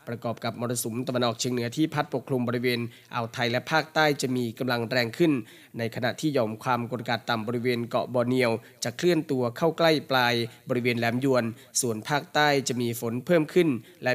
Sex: male